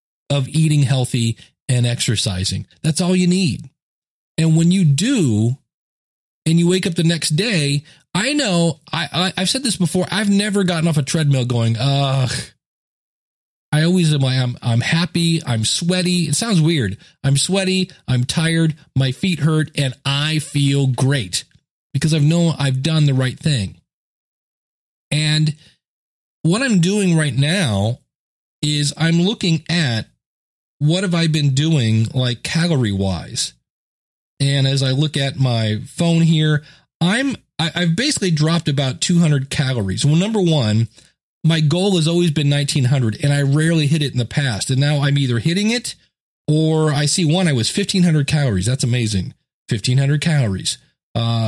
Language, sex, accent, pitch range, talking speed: English, male, American, 130-170 Hz, 165 wpm